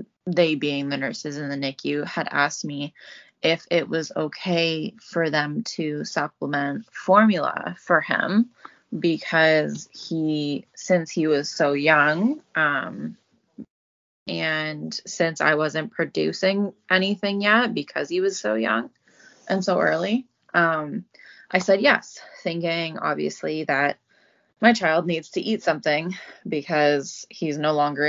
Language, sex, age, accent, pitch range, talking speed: English, female, 20-39, American, 145-185 Hz, 130 wpm